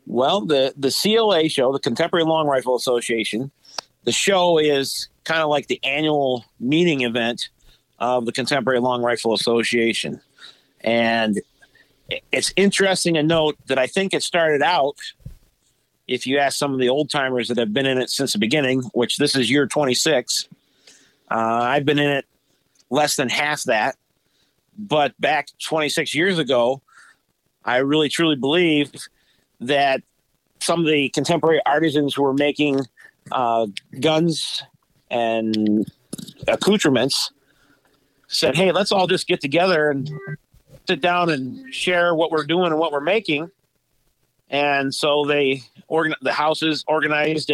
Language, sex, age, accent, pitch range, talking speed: English, male, 50-69, American, 130-160 Hz, 150 wpm